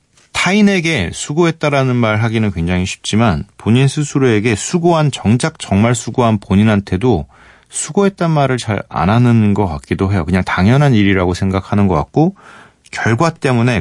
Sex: male